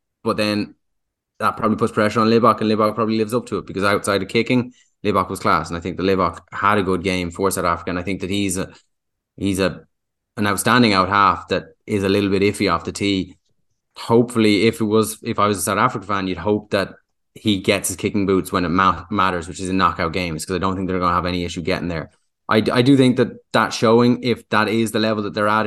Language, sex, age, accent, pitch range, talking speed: English, male, 10-29, Irish, 90-105 Hz, 255 wpm